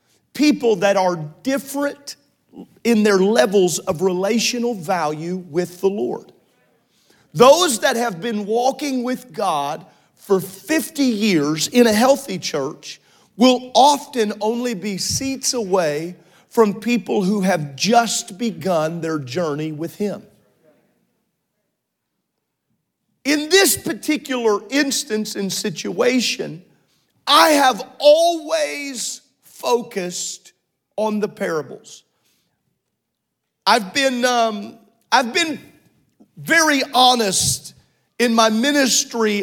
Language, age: English, 40-59